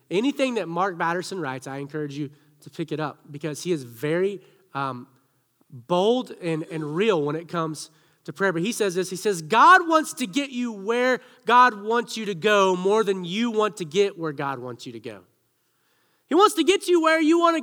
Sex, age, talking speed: male, 30-49, 220 wpm